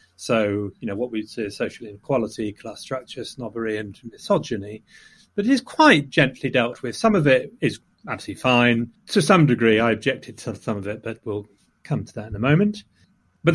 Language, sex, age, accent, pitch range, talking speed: English, male, 40-59, British, 110-150 Hz, 200 wpm